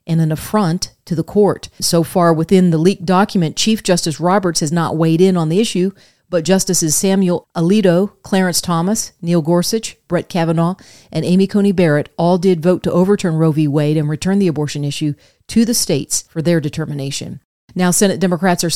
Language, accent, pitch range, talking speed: English, American, 160-190 Hz, 190 wpm